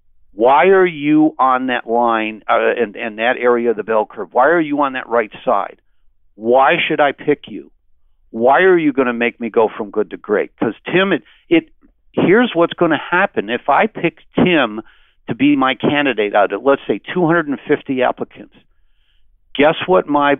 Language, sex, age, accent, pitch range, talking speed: English, male, 60-79, American, 115-145 Hz, 190 wpm